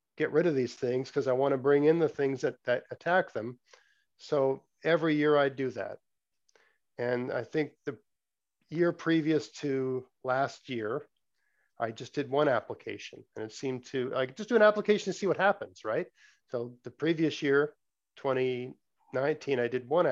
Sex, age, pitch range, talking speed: male, 50-69, 130-165 Hz, 175 wpm